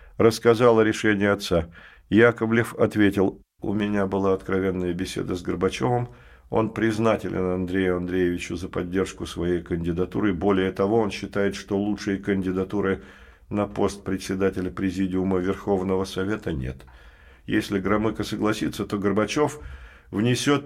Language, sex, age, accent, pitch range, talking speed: Russian, male, 50-69, native, 90-110 Hz, 120 wpm